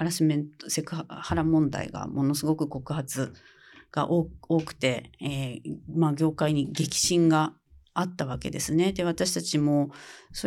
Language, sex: Japanese, female